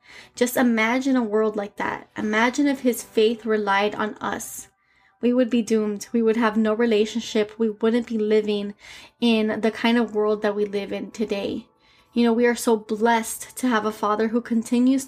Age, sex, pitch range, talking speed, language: 20-39, female, 215-245 Hz, 190 wpm, English